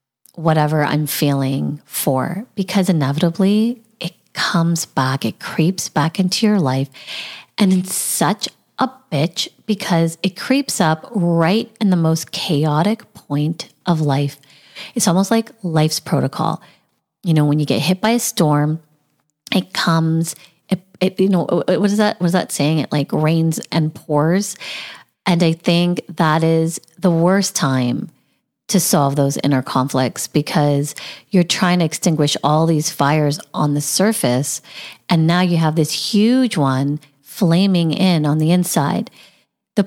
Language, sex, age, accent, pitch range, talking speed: English, female, 30-49, American, 150-195 Hz, 150 wpm